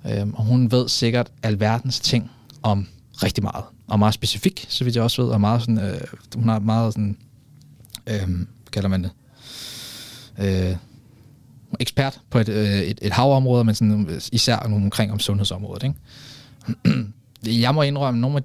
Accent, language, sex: native, Danish, male